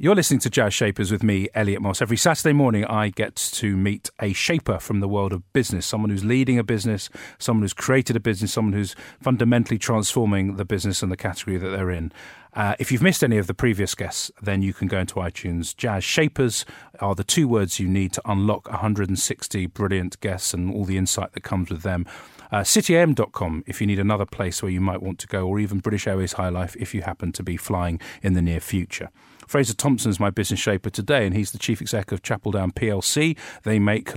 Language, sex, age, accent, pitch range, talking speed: English, male, 40-59, British, 95-115 Hz, 225 wpm